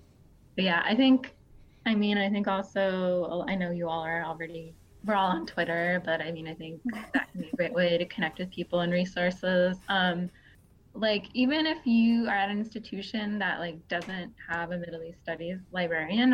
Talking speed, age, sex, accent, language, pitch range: 195 wpm, 20-39, female, American, English, 170-215 Hz